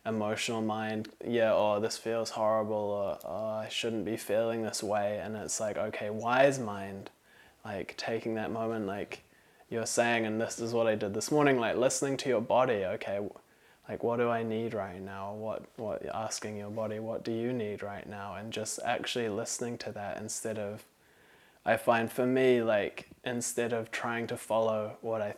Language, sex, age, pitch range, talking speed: English, male, 20-39, 110-120 Hz, 190 wpm